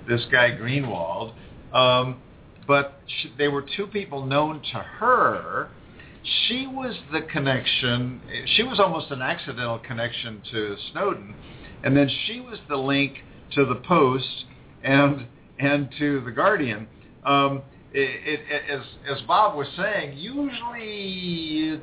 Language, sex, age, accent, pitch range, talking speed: English, male, 50-69, American, 130-170 Hz, 135 wpm